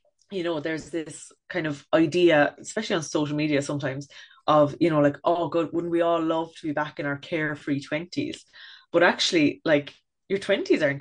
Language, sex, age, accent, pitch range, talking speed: English, female, 20-39, Irish, 145-170 Hz, 190 wpm